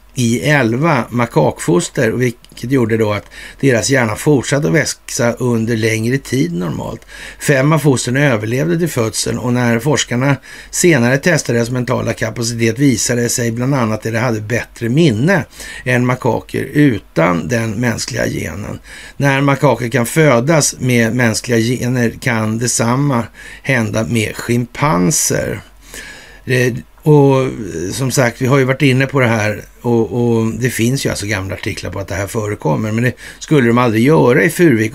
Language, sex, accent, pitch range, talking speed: Swedish, male, native, 115-135 Hz, 155 wpm